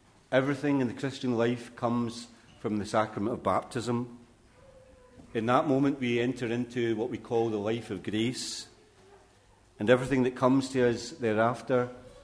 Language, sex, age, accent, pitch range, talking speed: English, male, 40-59, British, 110-125 Hz, 150 wpm